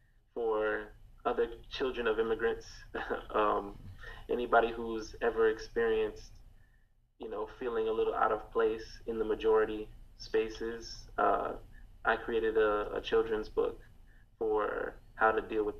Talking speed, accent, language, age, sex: 130 wpm, American, English, 20-39, male